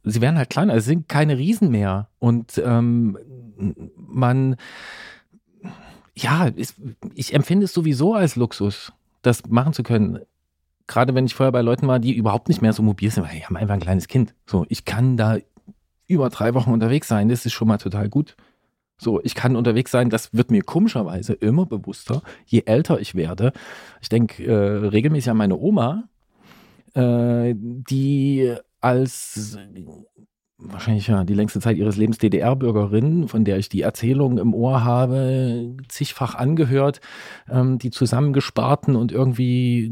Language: German